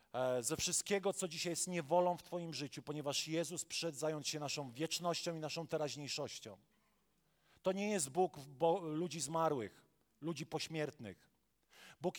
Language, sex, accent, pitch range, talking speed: Polish, male, native, 160-200 Hz, 140 wpm